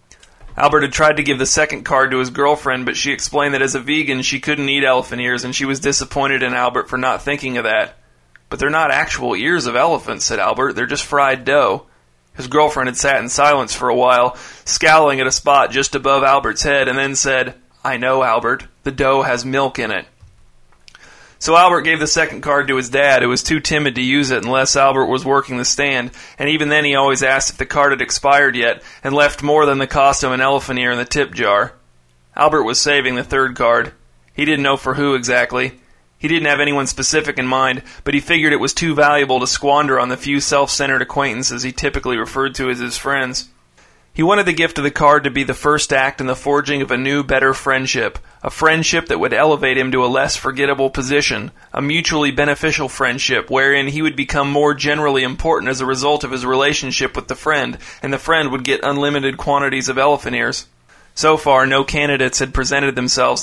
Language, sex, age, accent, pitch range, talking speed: English, male, 30-49, American, 130-145 Hz, 220 wpm